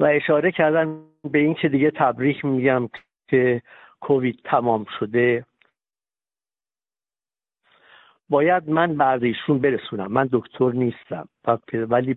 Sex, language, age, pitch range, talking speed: male, Persian, 50-69, 125-155 Hz, 105 wpm